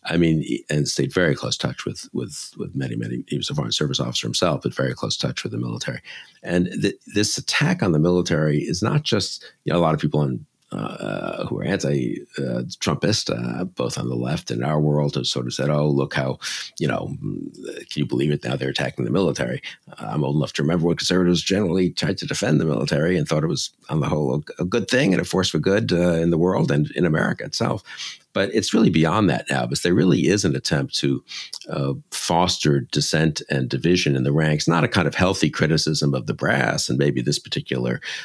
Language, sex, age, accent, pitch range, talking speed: English, male, 50-69, American, 70-85 Hz, 225 wpm